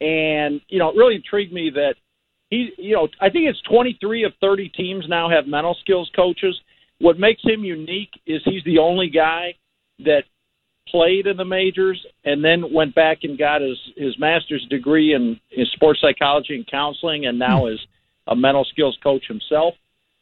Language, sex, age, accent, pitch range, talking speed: English, male, 50-69, American, 135-185 Hz, 180 wpm